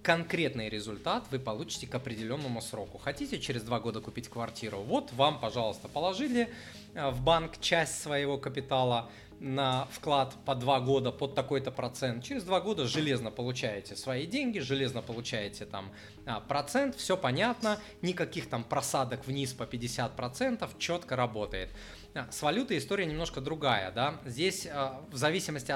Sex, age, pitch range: male, 20-39, 115-150 Hz